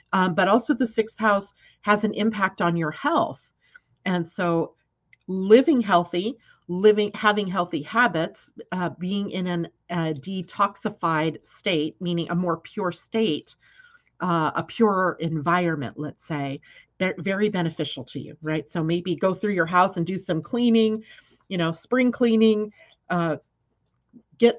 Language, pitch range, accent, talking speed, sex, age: English, 165-220 Hz, American, 140 wpm, female, 40-59